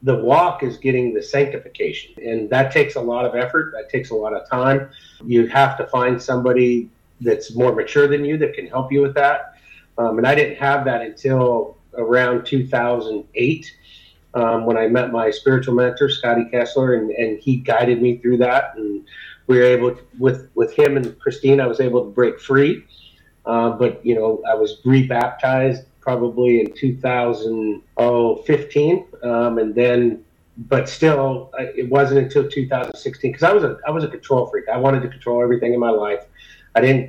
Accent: American